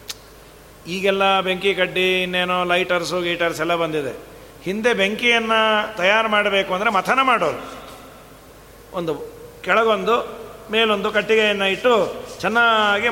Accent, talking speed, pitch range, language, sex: native, 95 wpm, 175-235 Hz, Kannada, male